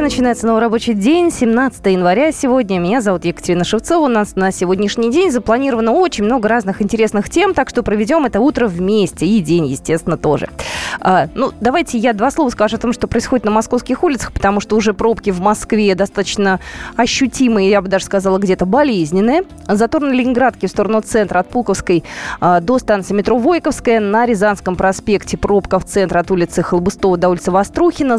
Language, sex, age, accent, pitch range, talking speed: Russian, female, 20-39, native, 190-245 Hz, 180 wpm